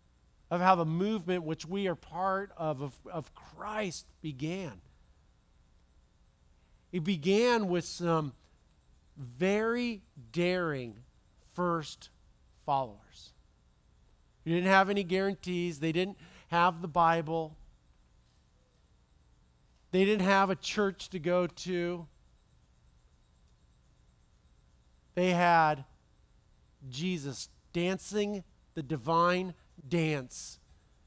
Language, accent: English, American